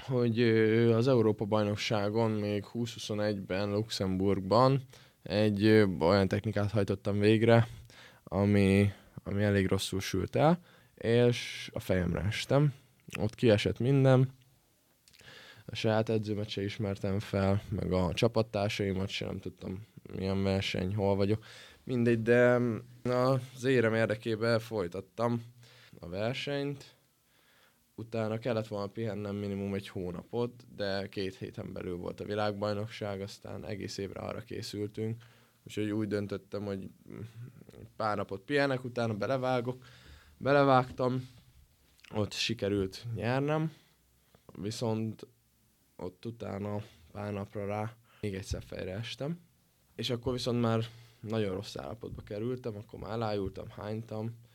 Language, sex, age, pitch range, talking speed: Hungarian, male, 20-39, 100-120 Hz, 110 wpm